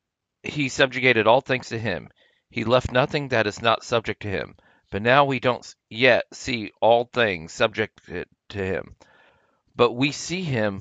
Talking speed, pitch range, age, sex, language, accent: 165 wpm, 110-130 Hz, 40-59, male, English, American